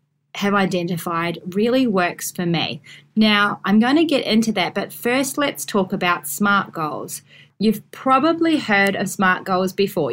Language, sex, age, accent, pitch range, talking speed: English, female, 30-49, Australian, 175-220 Hz, 160 wpm